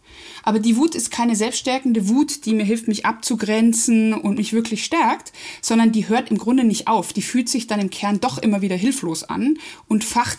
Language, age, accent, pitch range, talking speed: German, 20-39, German, 190-240 Hz, 210 wpm